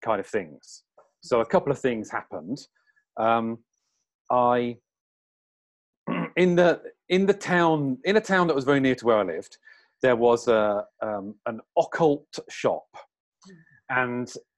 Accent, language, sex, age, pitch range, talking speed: British, English, male, 40-59, 120-170 Hz, 140 wpm